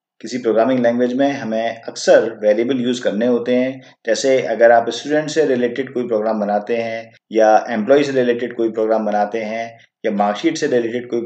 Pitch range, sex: 115-135 Hz, male